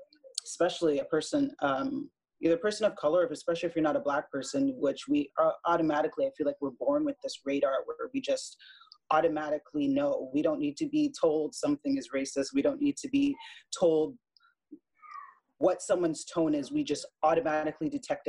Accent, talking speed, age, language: American, 180 wpm, 30-49, English